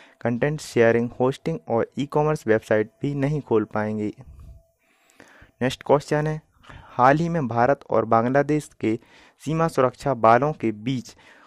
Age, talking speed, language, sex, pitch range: 30-49, 135 wpm, Hindi, male, 115-150 Hz